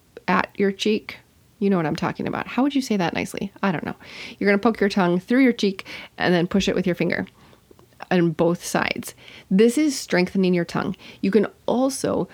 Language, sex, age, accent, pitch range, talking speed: English, female, 30-49, American, 160-205 Hz, 215 wpm